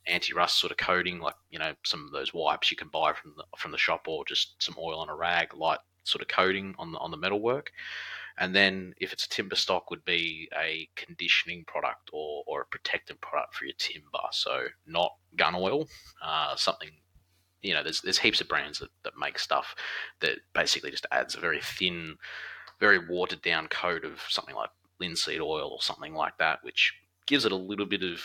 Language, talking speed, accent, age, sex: English, 210 wpm, Australian, 30-49, male